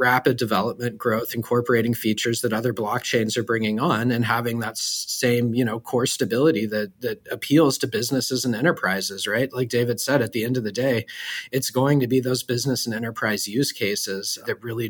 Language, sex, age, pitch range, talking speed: English, male, 30-49, 110-130 Hz, 195 wpm